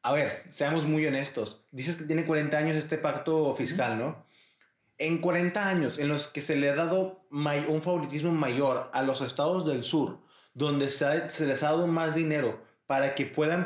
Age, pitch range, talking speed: 30-49, 145-175 Hz, 185 wpm